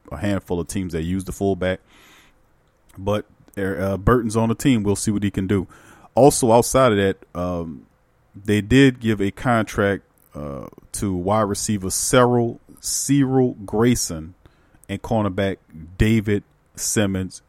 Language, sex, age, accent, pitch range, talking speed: English, male, 40-59, American, 95-110 Hz, 140 wpm